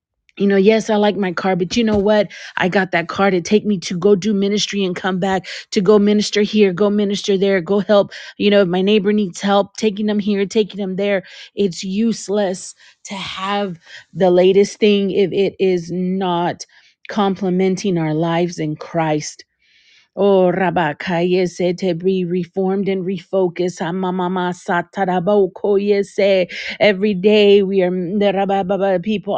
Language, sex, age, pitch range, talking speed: English, female, 30-49, 180-200 Hz, 160 wpm